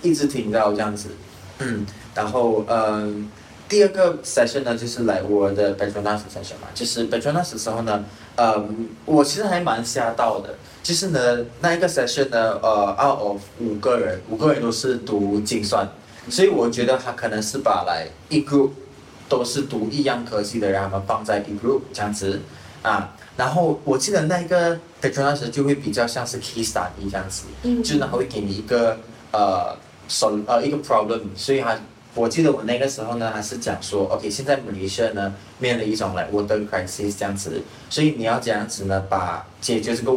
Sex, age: male, 20-39